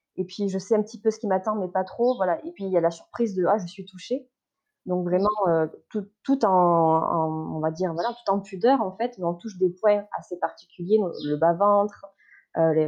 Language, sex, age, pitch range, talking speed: French, female, 20-39, 175-215 Hz, 255 wpm